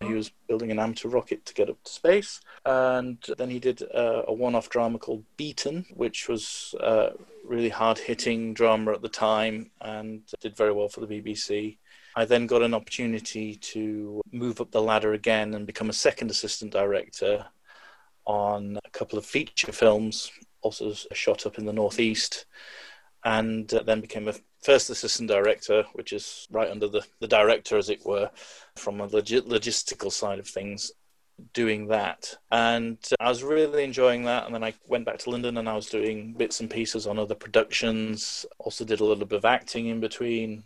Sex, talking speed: male, 180 wpm